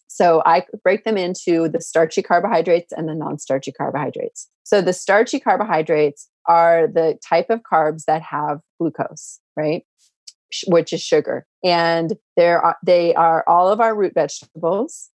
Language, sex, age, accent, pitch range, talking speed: English, female, 30-49, American, 160-195 Hz, 145 wpm